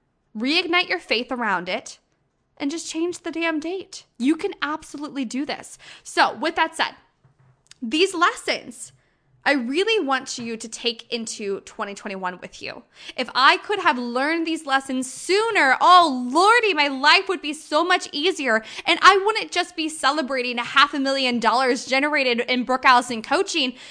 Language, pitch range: English, 230-315 Hz